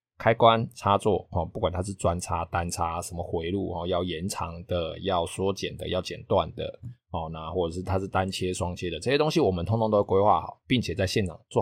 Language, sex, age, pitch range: Chinese, male, 20-39, 90-110 Hz